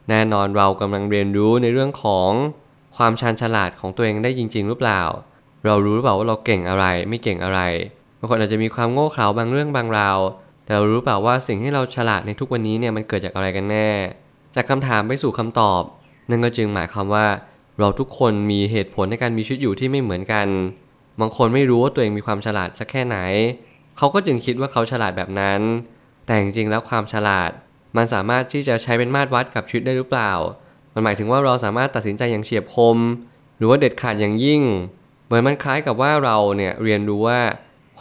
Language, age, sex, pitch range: Thai, 20-39, male, 105-130 Hz